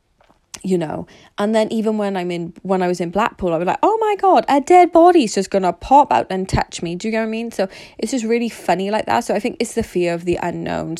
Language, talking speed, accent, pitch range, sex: English, 280 wpm, British, 170-200 Hz, female